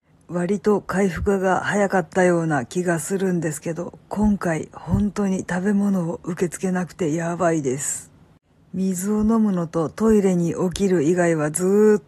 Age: 50-69